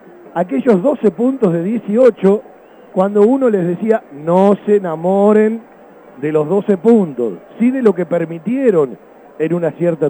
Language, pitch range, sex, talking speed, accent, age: Spanish, 180-245 Hz, male, 145 wpm, Argentinian, 40-59